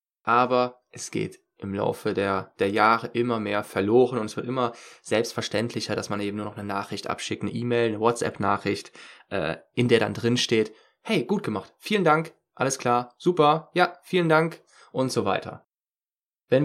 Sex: male